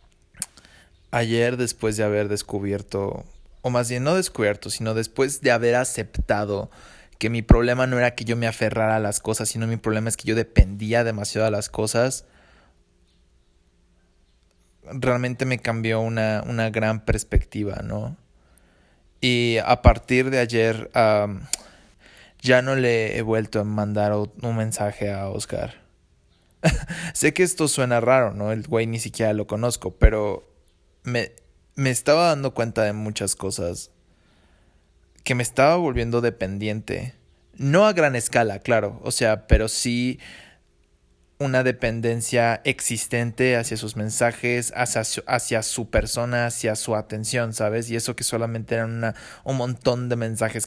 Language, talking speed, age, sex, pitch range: English, 145 wpm, 20-39, male, 105-120 Hz